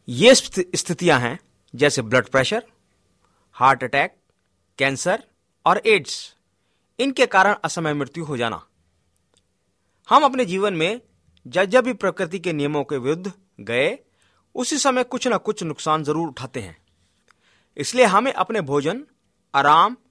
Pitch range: 140-220 Hz